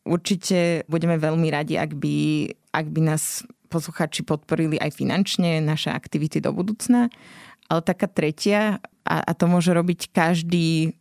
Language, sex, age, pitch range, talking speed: Slovak, female, 20-39, 155-185 Hz, 135 wpm